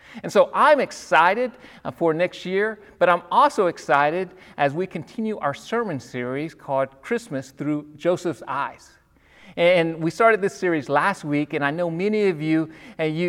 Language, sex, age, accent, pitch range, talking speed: English, male, 40-59, American, 155-215 Hz, 165 wpm